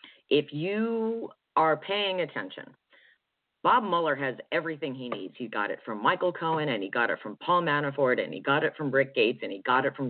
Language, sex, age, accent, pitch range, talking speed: English, female, 40-59, American, 130-180 Hz, 215 wpm